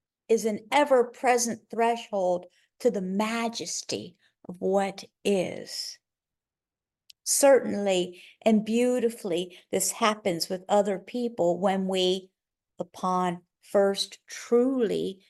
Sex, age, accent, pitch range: female, 50-69, American, 185-240 Hz